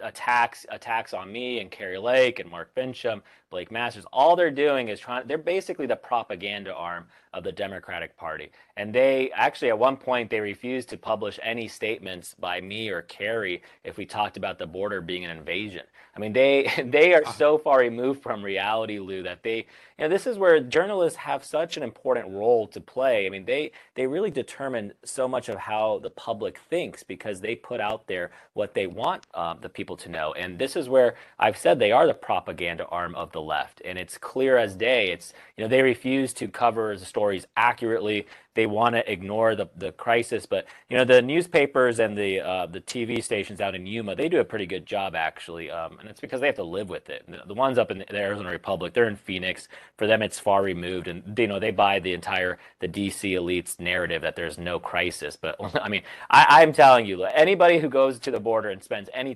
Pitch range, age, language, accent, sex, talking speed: 100-130 Hz, 30-49, English, American, male, 220 wpm